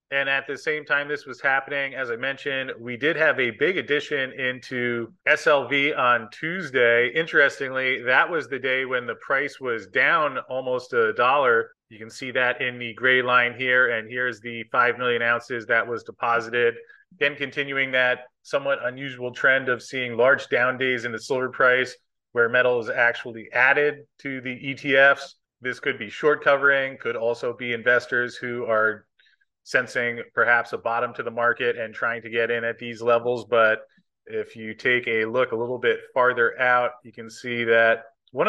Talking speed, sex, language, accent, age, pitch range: 180 wpm, male, English, American, 30-49, 120-145 Hz